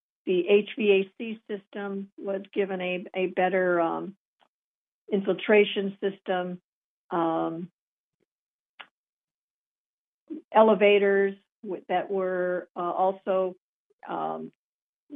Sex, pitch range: female, 180-205 Hz